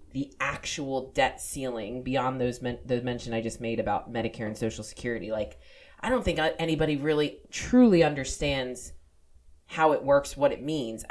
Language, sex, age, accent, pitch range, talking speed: English, female, 20-39, American, 110-145 Hz, 160 wpm